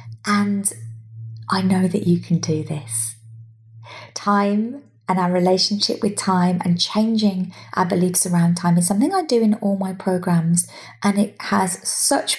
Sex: female